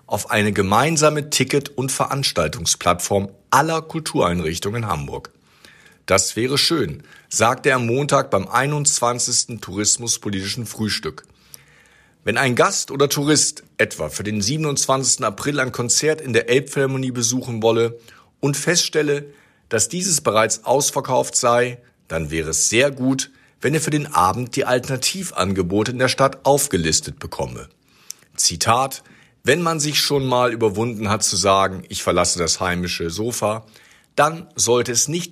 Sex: male